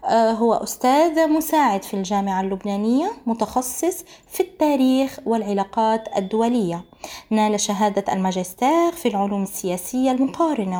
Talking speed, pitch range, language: 100 wpm, 205-295 Hz, Arabic